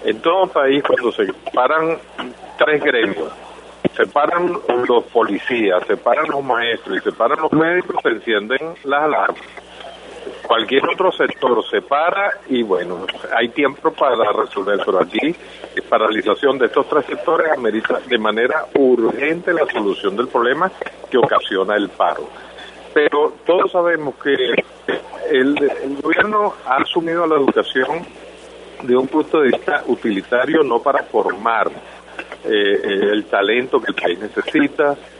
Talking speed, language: 145 wpm, Spanish